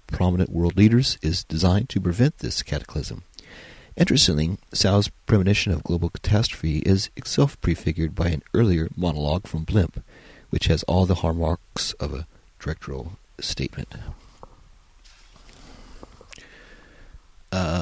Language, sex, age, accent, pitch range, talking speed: English, male, 40-59, American, 80-100 Hz, 115 wpm